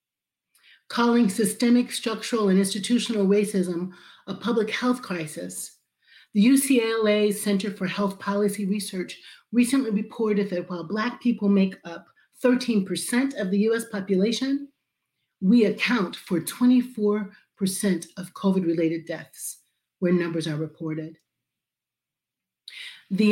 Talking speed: 110 wpm